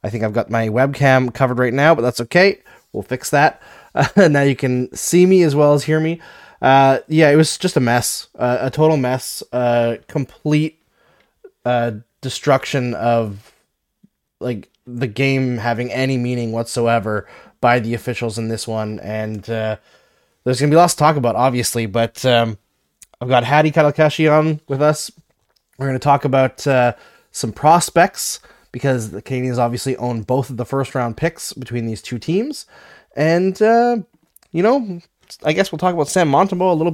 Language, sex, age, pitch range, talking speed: English, male, 20-39, 120-155 Hz, 180 wpm